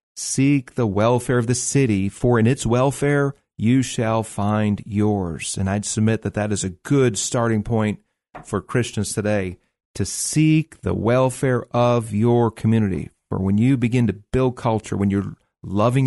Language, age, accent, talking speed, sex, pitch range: English, 40-59, American, 165 wpm, male, 105-130 Hz